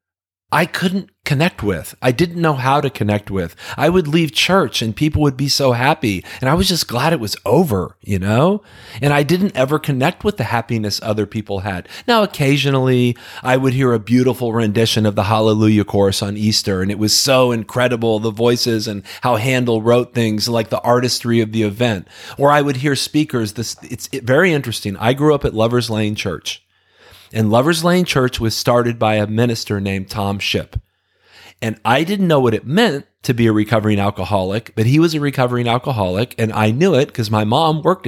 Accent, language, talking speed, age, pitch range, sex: American, English, 200 wpm, 40-59, 110-140 Hz, male